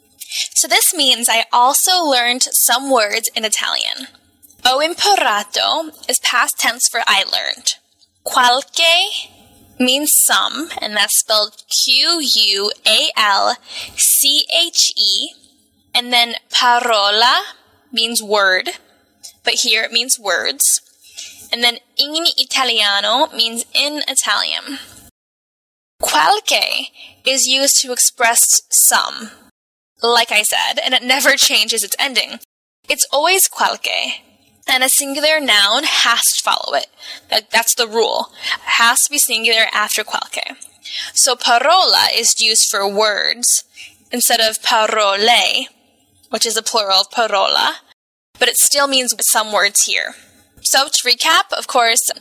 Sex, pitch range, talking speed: female, 225-285 Hz, 120 wpm